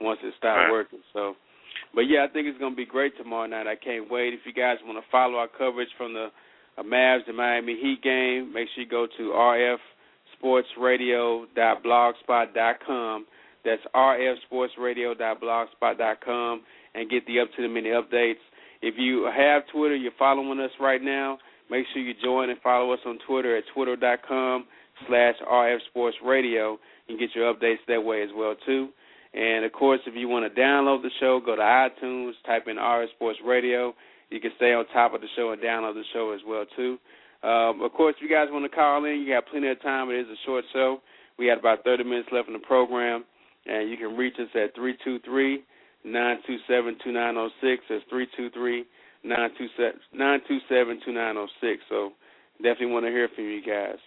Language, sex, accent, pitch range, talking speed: English, male, American, 115-130 Hz, 180 wpm